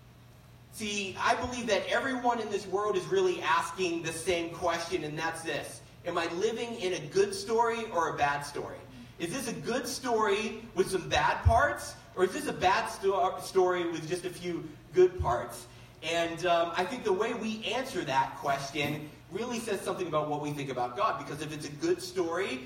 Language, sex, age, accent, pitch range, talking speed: English, male, 40-59, American, 140-185 Hz, 195 wpm